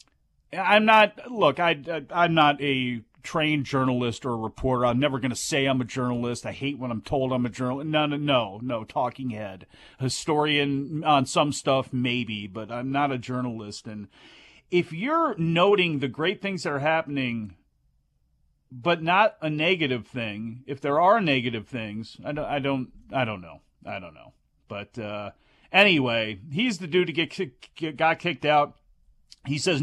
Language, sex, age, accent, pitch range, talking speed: English, male, 40-59, American, 125-165 Hz, 175 wpm